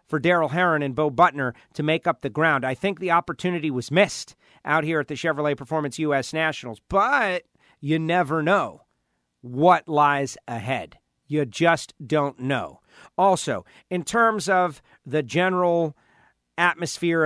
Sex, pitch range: male, 140-170 Hz